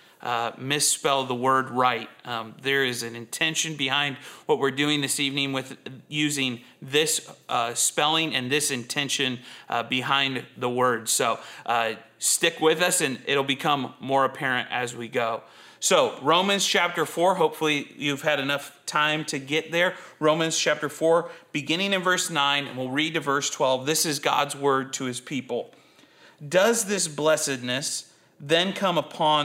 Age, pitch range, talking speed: 30-49, 140-175 Hz, 160 wpm